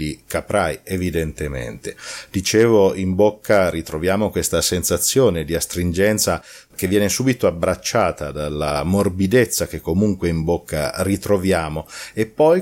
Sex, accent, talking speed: male, native, 110 wpm